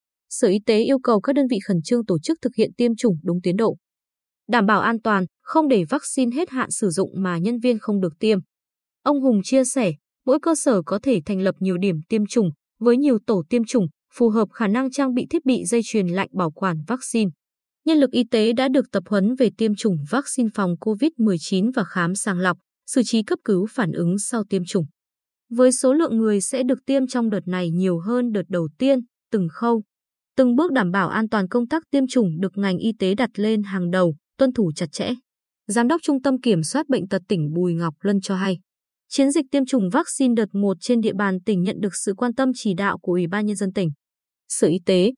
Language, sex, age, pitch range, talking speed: Vietnamese, female, 20-39, 190-255 Hz, 235 wpm